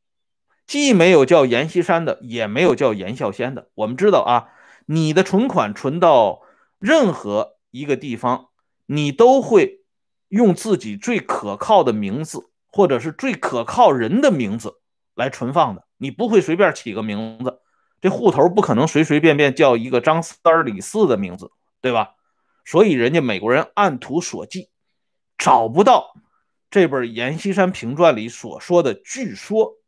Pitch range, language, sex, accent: 155-220 Hz, Swedish, male, Chinese